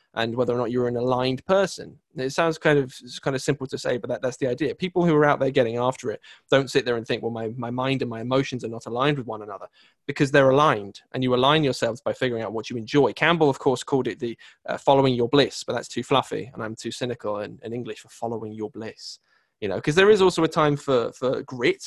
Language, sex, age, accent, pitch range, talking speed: English, male, 20-39, British, 120-150 Hz, 265 wpm